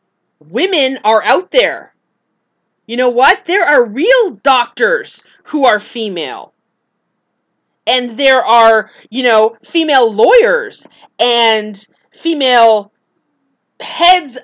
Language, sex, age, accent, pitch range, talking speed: English, female, 30-49, American, 225-345 Hz, 100 wpm